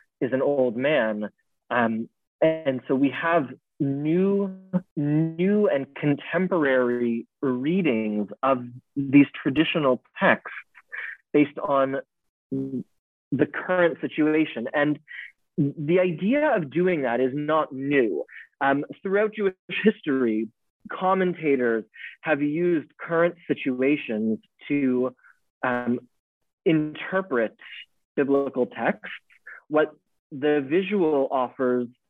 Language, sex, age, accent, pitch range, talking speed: English, male, 30-49, American, 130-165 Hz, 90 wpm